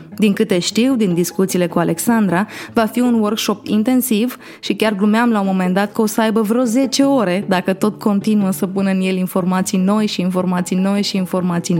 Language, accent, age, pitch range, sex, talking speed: Romanian, native, 20-39, 185-235 Hz, female, 205 wpm